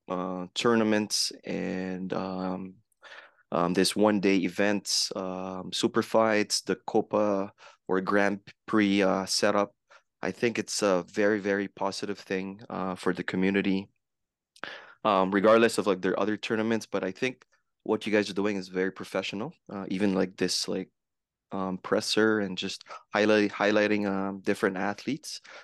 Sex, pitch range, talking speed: male, 95-105 Hz, 145 wpm